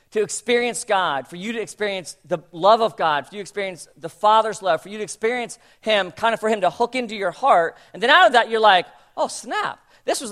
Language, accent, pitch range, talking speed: English, American, 160-220 Hz, 250 wpm